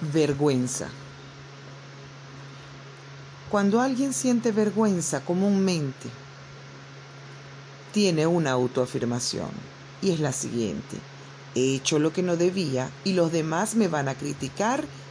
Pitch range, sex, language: 140-175 Hz, female, Spanish